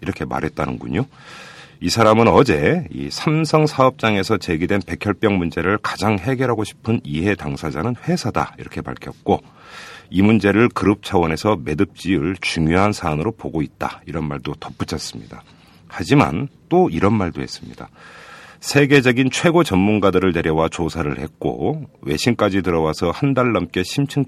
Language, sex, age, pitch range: Korean, male, 40-59, 80-125 Hz